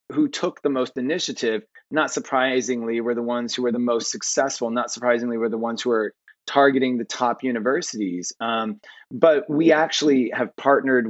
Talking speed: 175 wpm